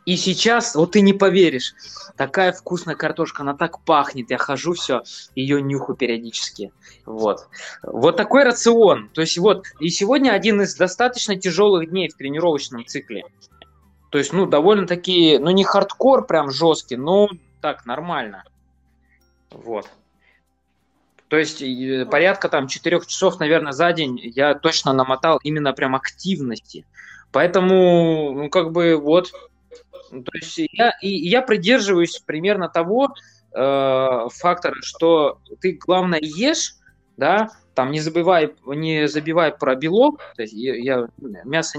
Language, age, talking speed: Russian, 20-39, 135 wpm